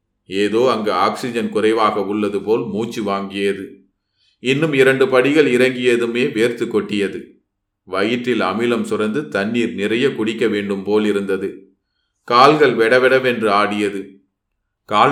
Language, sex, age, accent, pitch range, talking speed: Tamil, male, 30-49, native, 105-125 Hz, 85 wpm